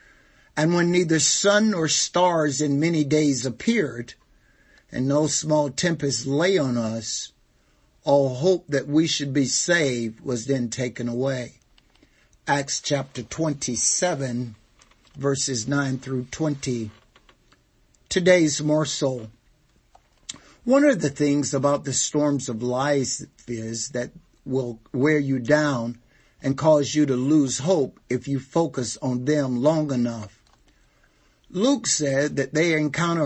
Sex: male